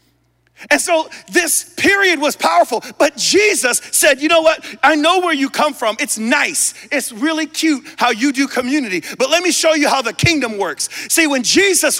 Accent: American